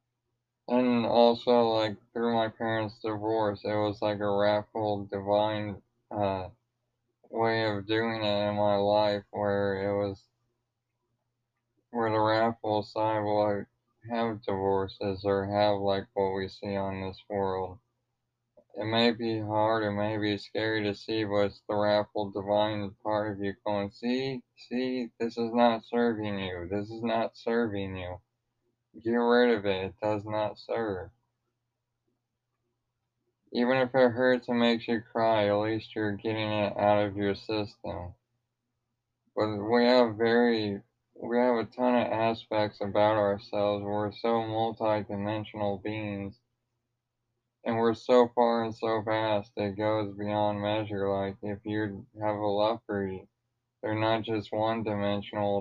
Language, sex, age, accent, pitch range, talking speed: English, male, 20-39, American, 105-120 Hz, 145 wpm